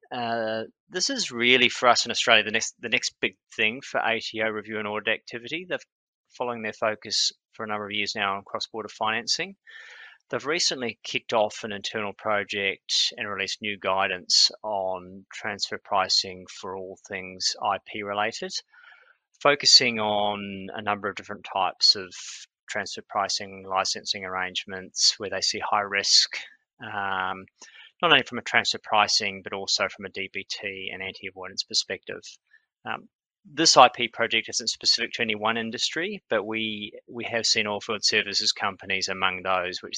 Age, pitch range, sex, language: 30-49, 100-140 Hz, male, English